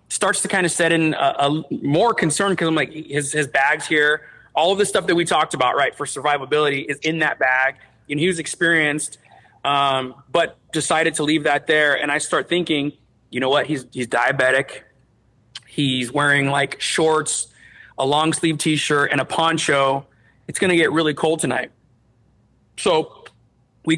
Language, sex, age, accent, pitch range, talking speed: English, male, 30-49, American, 135-165 Hz, 185 wpm